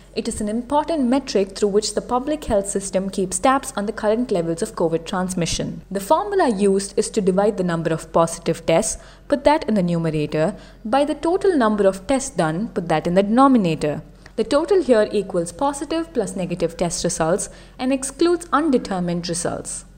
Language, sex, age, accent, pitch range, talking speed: English, female, 20-39, Indian, 180-265 Hz, 185 wpm